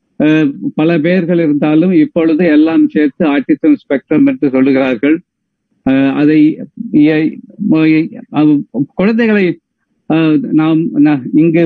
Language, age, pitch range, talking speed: Tamil, 50-69, 145-185 Hz, 60 wpm